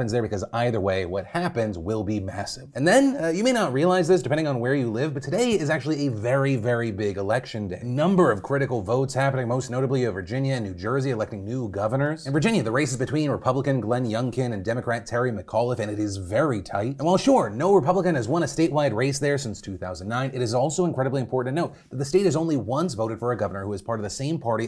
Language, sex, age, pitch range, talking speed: English, male, 30-49, 115-150 Hz, 255 wpm